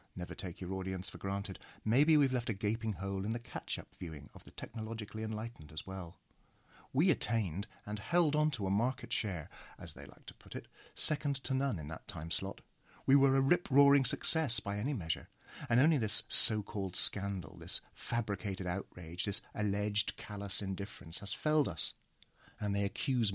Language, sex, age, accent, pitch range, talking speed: English, male, 40-59, British, 100-130 Hz, 180 wpm